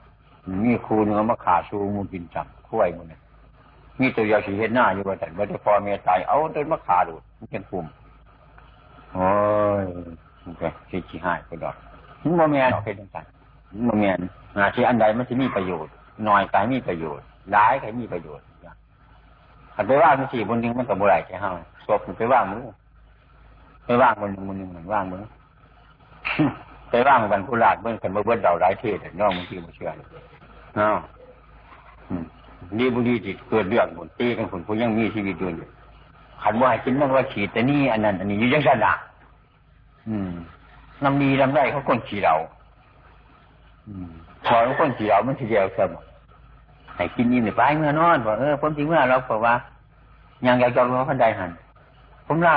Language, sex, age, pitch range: Thai, male, 60-79, 95-130 Hz